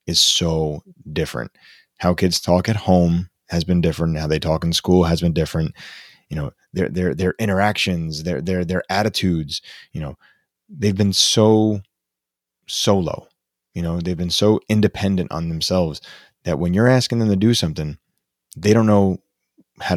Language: English